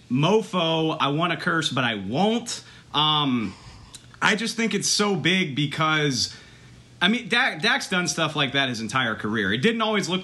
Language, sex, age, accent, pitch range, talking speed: English, male, 30-49, American, 115-160 Hz, 175 wpm